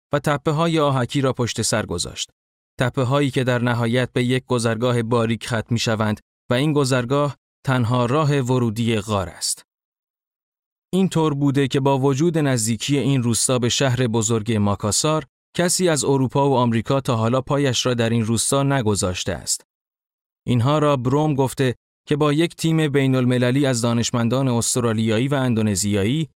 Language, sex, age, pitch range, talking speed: Persian, male, 30-49, 115-145 Hz, 160 wpm